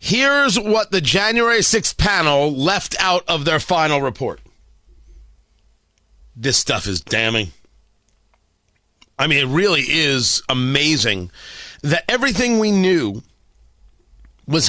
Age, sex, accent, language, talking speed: 40-59, male, American, English, 110 wpm